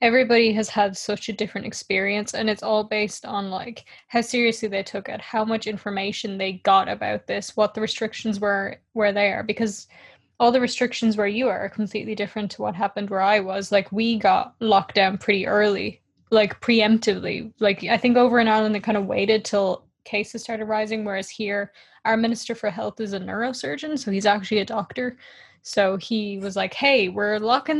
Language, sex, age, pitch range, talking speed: English, female, 10-29, 205-235 Hz, 200 wpm